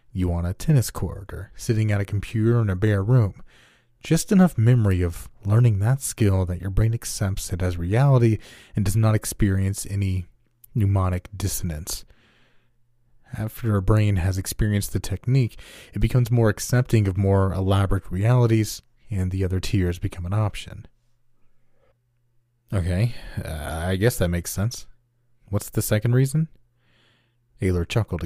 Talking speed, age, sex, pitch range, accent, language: 150 wpm, 30-49, male, 95-120 Hz, American, English